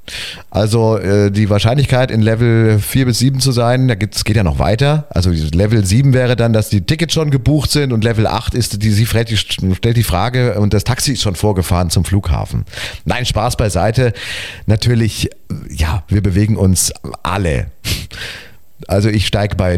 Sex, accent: male, German